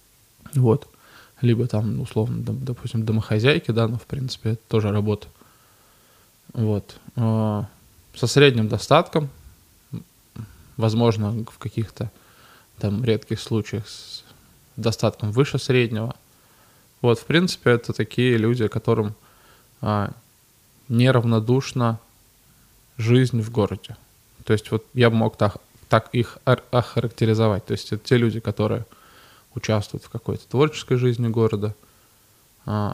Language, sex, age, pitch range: Russian, male, 20-39, 105-125 Hz